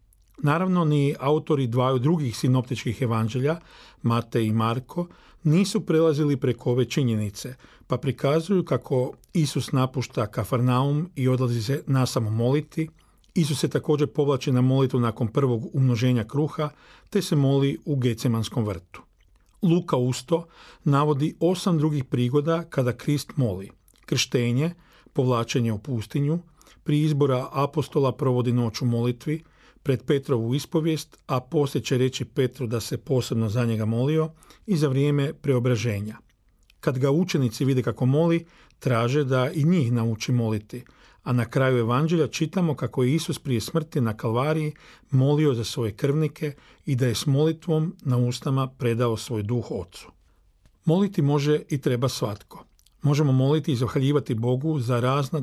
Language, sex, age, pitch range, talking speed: Croatian, male, 40-59, 120-150 Hz, 140 wpm